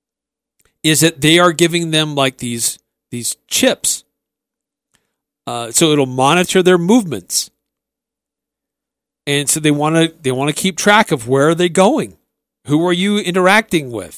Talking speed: 150 wpm